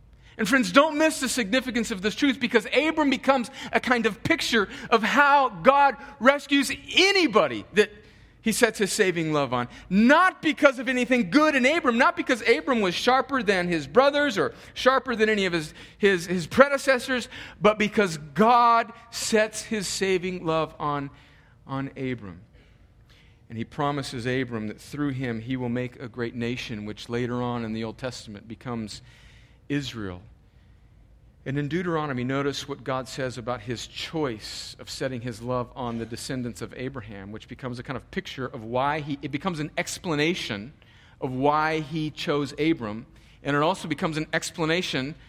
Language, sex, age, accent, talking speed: English, male, 40-59, American, 170 wpm